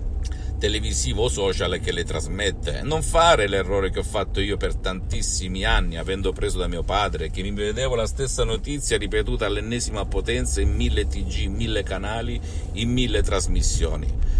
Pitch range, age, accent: 80-105 Hz, 50-69, native